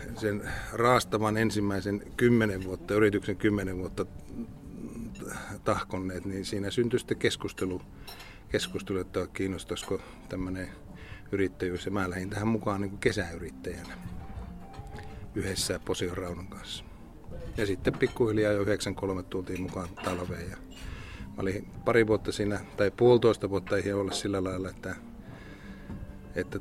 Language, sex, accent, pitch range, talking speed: Finnish, male, native, 90-100 Hz, 120 wpm